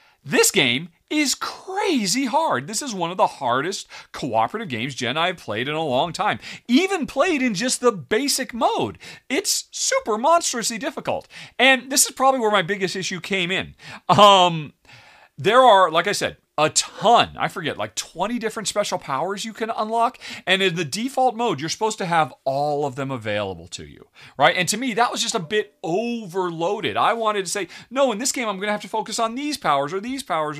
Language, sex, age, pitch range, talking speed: English, male, 40-59, 150-240 Hz, 205 wpm